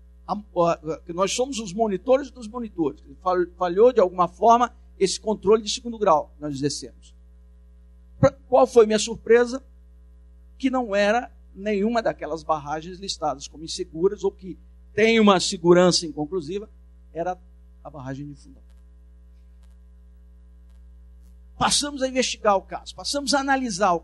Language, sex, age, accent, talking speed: Portuguese, male, 50-69, Brazilian, 140 wpm